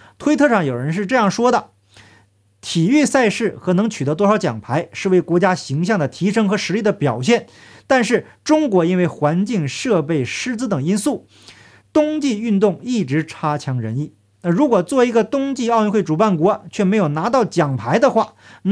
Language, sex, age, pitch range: Chinese, male, 50-69, 150-230 Hz